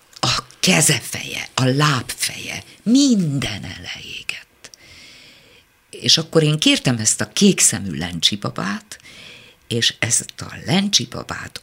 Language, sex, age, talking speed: Hungarian, female, 50-69, 95 wpm